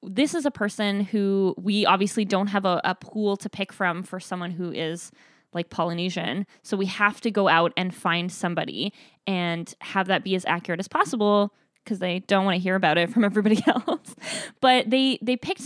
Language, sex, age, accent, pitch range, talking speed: English, female, 20-39, American, 185-220 Hz, 205 wpm